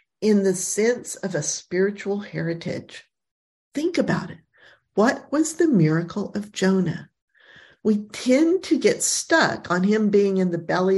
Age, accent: 50-69, American